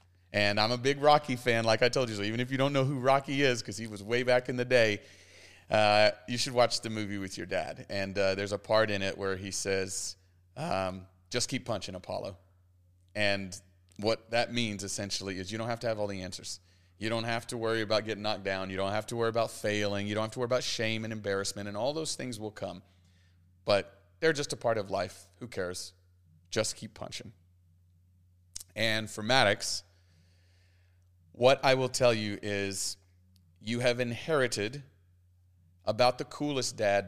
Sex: male